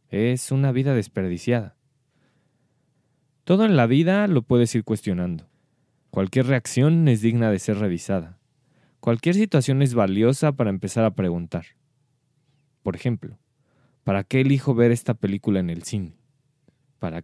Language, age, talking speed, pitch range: Spanish, 20-39, 135 wpm, 100-140 Hz